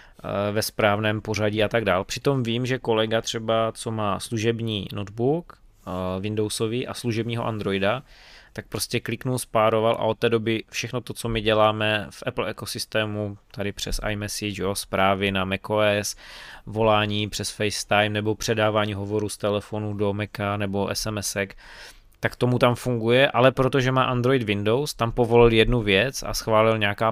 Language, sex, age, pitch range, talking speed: Czech, male, 20-39, 105-120 Hz, 155 wpm